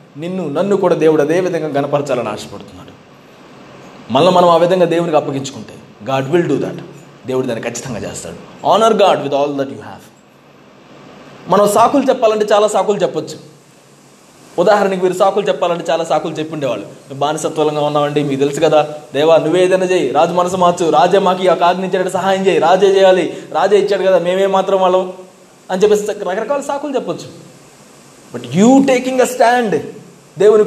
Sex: male